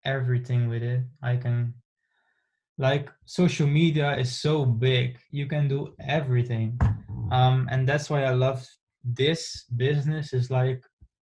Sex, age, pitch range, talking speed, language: male, 20-39, 125-145 Hz, 135 wpm, English